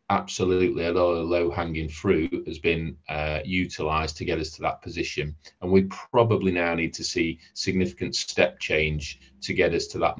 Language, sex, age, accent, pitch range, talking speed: English, male, 30-49, British, 85-100 Hz, 180 wpm